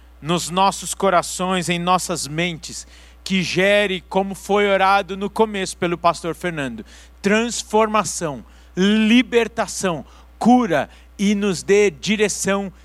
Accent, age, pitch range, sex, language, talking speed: Brazilian, 50-69, 165-210 Hz, male, Portuguese, 105 wpm